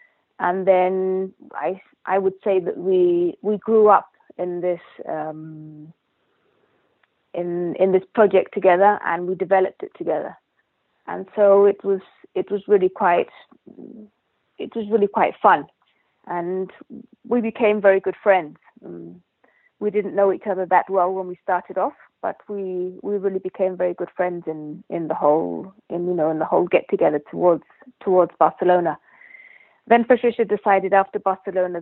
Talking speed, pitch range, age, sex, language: 155 wpm, 175-205 Hz, 30-49, female, English